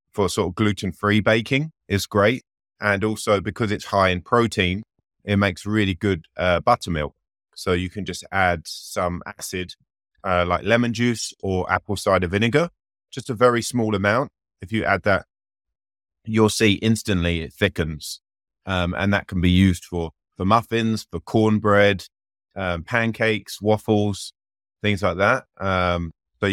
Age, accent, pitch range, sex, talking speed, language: 30-49, British, 90-105 Hz, male, 150 wpm, English